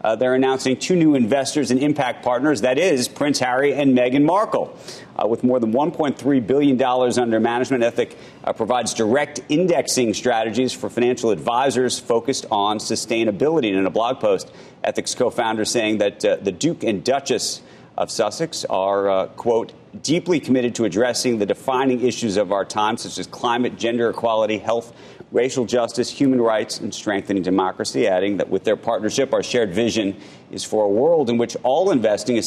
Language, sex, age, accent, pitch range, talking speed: English, male, 40-59, American, 105-130 Hz, 175 wpm